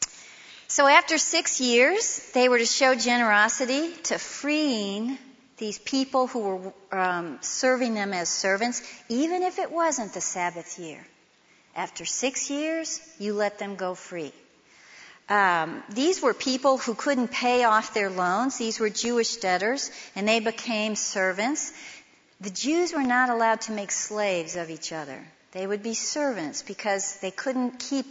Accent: American